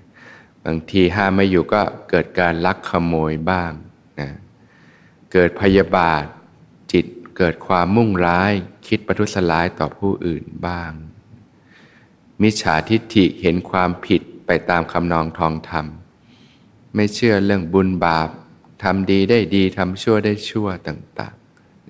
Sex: male